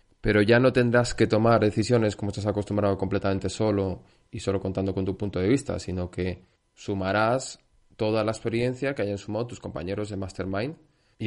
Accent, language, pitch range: Spanish, Spanish, 100-130 Hz